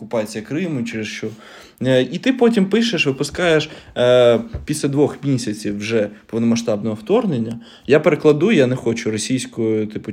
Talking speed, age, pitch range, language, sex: 130 wpm, 20-39, 120-160 Hz, Ukrainian, male